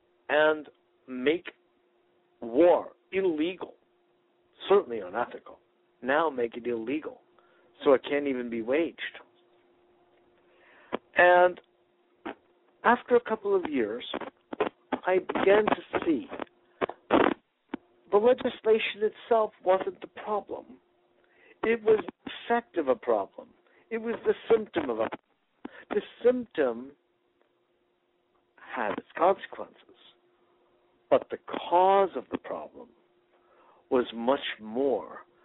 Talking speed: 100 wpm